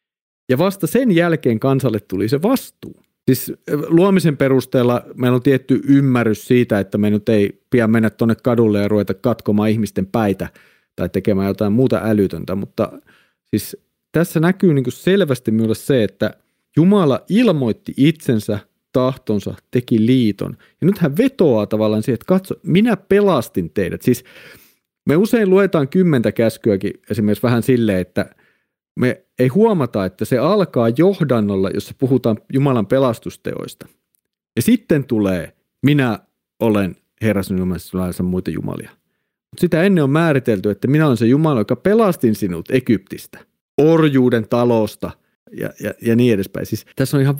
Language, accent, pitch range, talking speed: Finnish, native, 105-155 Hz, 140 wpm